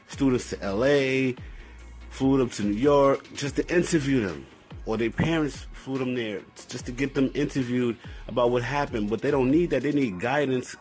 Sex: male